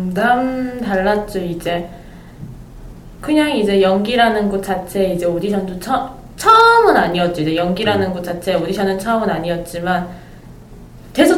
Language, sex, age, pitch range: Korean, female, 20-39, 185-255 Hz